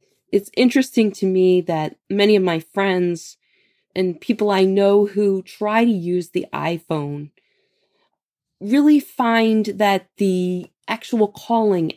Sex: female